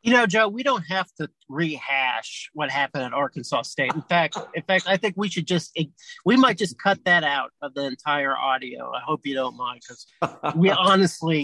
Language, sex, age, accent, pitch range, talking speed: English, male, 40-59, American, 140-190 Hz, 210 wpm